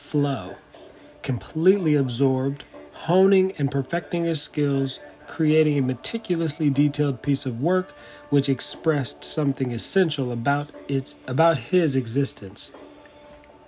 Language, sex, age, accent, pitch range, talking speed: English, male, 40-59, American, 140-175 Hz, 105 wpm